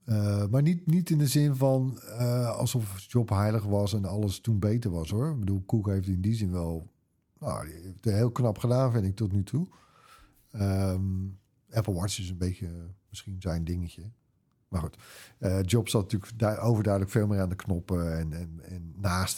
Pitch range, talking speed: 95-125 Hz, 200 wpm